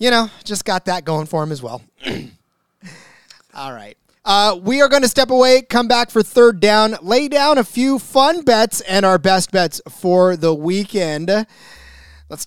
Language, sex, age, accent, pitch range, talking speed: English, male, 30-49, American, 170-235 Hz, 185 wpm